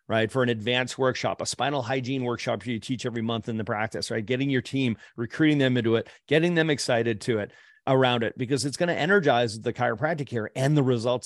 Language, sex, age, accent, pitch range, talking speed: English, male, 40-59, American, 120-145 Hz, 225 wpm